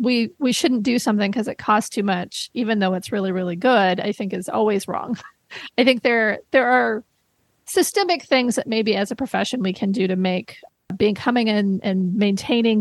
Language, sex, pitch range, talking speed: English, female, 195-245 Hz, 200 wpm